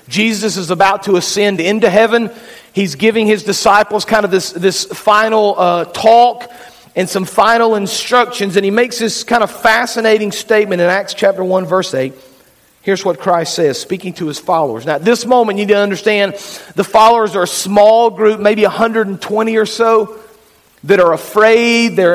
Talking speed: 180 wpm